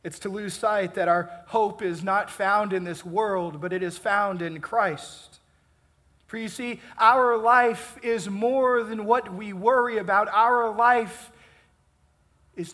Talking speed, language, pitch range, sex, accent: 160 wpm, English, 165-265 Hz, male, American